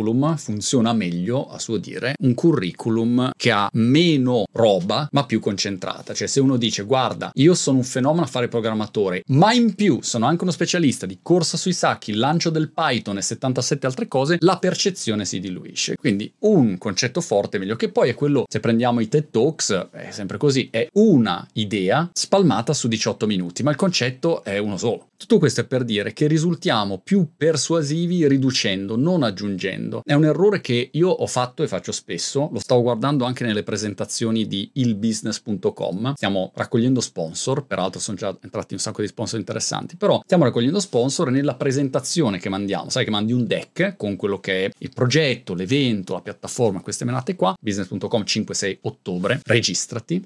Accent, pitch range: native, 110-160 Hz